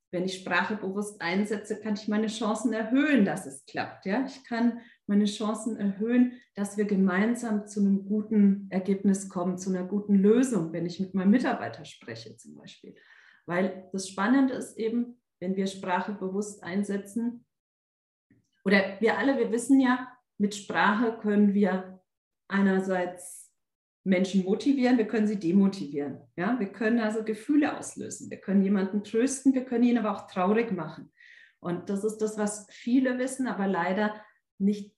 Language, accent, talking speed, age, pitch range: German, German, 160 wpm, 40-59, 180-225 Hz